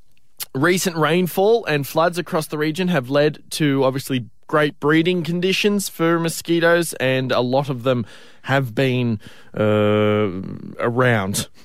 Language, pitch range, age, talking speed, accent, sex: English, 120-165 Hz, 20-39, 130 wpm, Australian, male